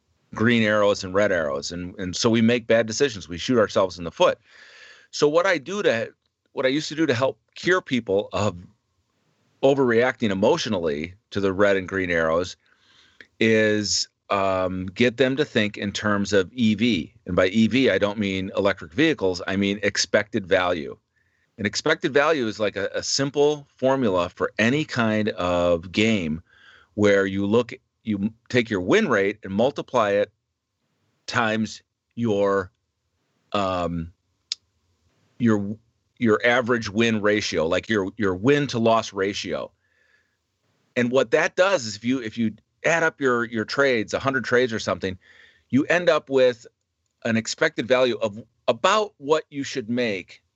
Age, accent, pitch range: 40-59, American, 100-125 Hz